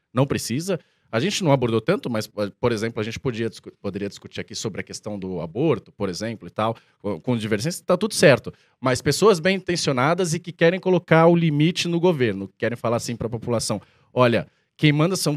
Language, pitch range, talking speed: Portuguese, 110-155 Hz, 205 wpm